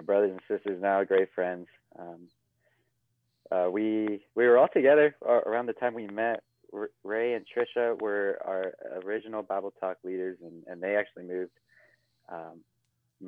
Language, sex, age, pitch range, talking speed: English, male, 20-39, 95-120 Hz, 150 wpm